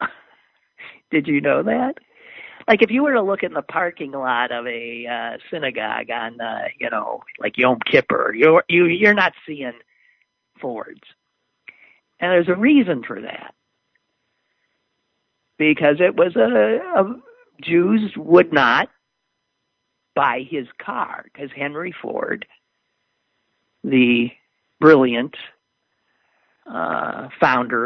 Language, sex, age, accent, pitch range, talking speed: English, male, 50-69, American, 125-175 Hz, 115 wpm